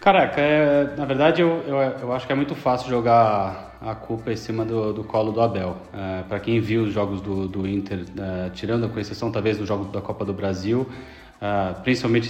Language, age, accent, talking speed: Portuguese, 20-39, Brazilian, 215 wpm